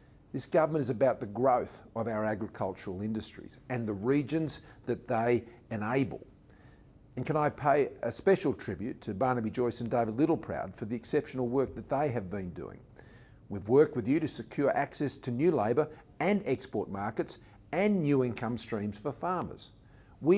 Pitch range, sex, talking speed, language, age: 110-150 Hz, male, 170 wpm, English, 50-69